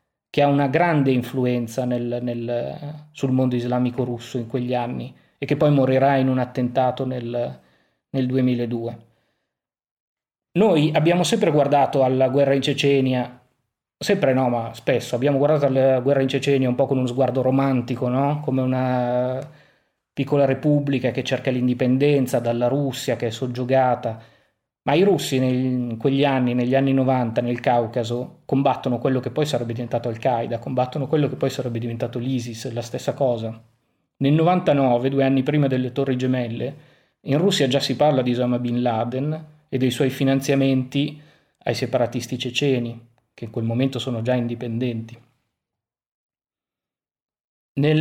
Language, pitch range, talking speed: Italian, 120-140 Hz, 145 wpm